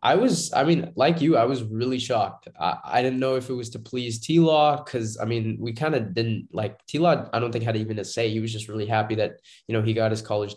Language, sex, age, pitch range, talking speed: English, male, 20-39, 110-125 Hz, 275 wpm